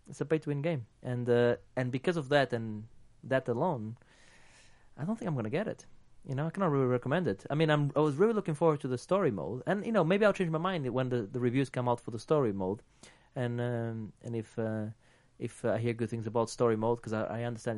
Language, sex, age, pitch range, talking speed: English, male, 30-49, 115-160 Hz, 250 wpm